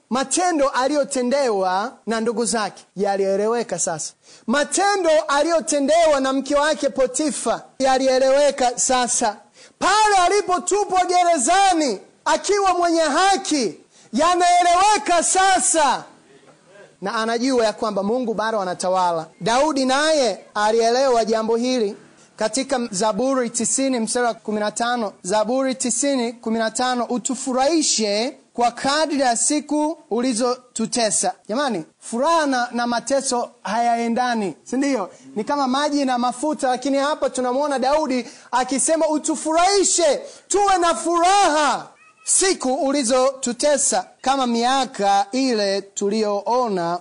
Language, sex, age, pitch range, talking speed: Swahili, male, 30-49, 220-295 Hz, 95 wpm